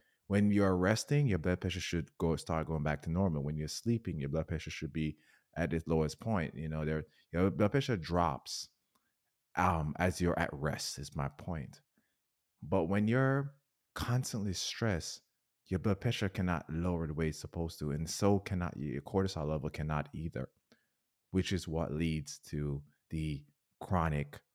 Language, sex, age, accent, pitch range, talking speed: English, male, 30-49, American, 80-105 Hz, 170 wpm